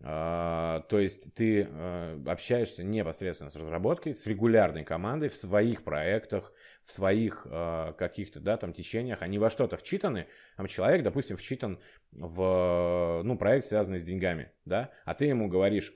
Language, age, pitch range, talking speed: Russian, 30-49, 85-110 Hz, 145 wpm